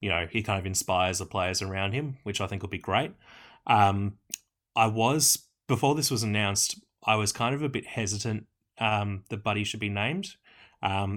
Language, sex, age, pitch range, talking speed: English, male, 20-39, 100-115 Hz, 200 wpm